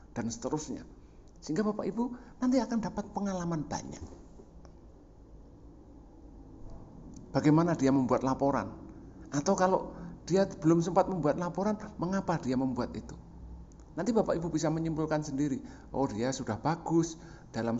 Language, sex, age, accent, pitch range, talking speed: Indonesian, male, 50-69, native, 105-165 Hz, 120 wpm